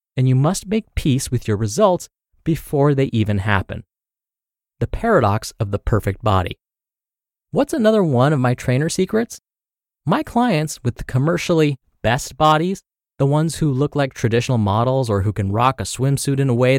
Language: English